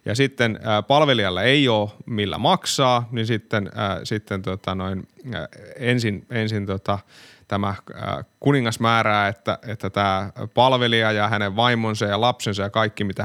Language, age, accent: Finnish, 20-39, native